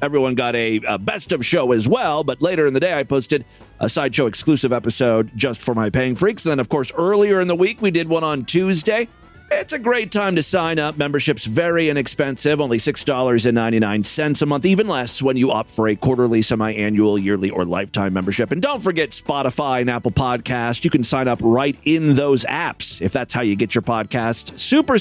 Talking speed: 210 wpm